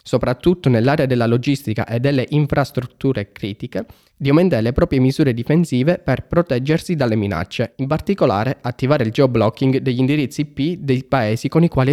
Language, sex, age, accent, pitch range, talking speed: Italian, male, 20-39, native, 115-150 Hz, 155 wpm